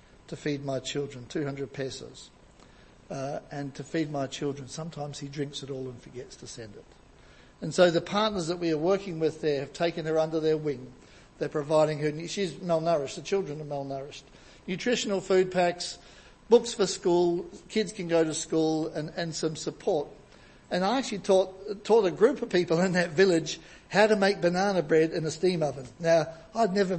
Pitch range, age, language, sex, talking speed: 155-195 Hz, 60-79, English, male, 190 wpm